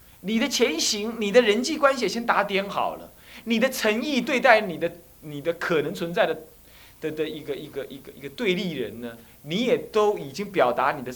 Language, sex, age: Chinese, male, 30-49